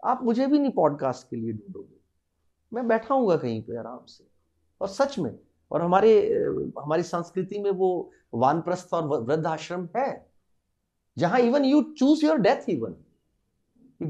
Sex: male